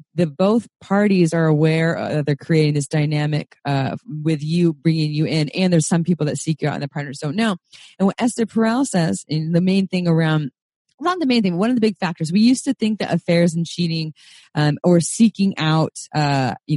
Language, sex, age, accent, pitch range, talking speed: English, female, 20-39, American, 155-200 Hz, 225 wpm